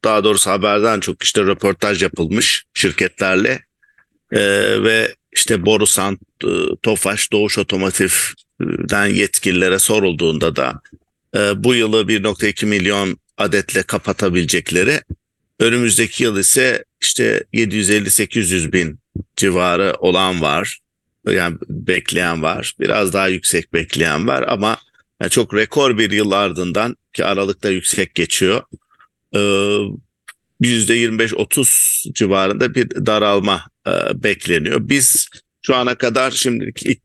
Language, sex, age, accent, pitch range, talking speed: English, male, 50-69, Turkish, 95-115 Hz, 105 wpm